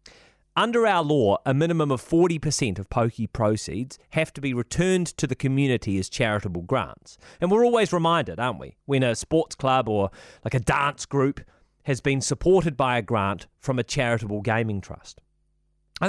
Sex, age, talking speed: male, 30-49, 175 wpm